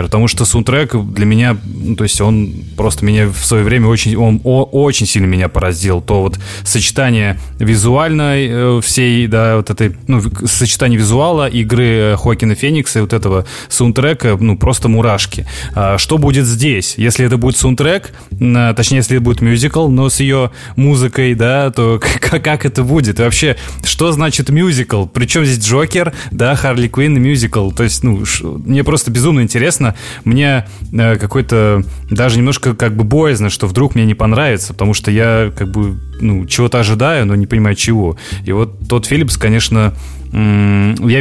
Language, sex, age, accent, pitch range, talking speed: Russian, male, 20-39, native, 100-125 Hz, 165 wpm